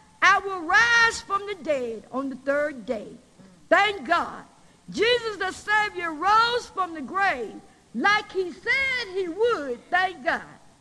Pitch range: 290-415 Hz